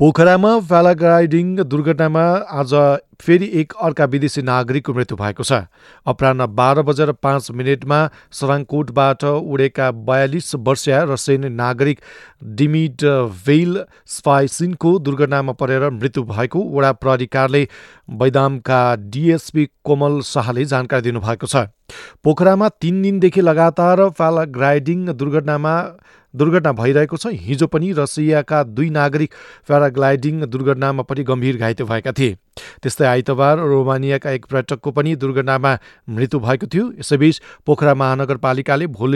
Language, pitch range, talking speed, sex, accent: English, 130-155 Hz, 115 wpm, male, Indian